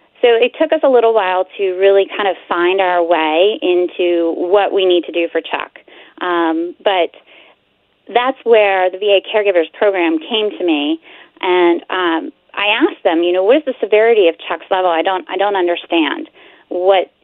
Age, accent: 30-49, American